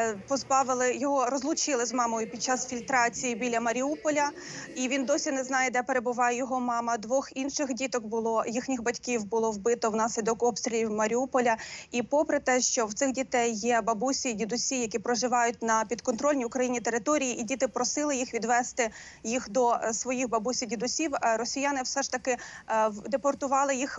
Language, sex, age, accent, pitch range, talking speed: Ukrainian, female, 30-49, native, 240-270 Hz, 160 wpm